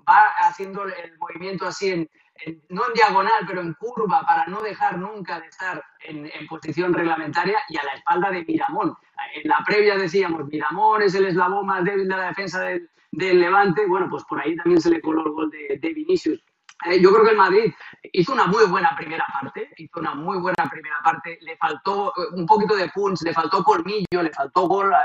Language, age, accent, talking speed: Spanish, 30-49, Spanish, 215 wpm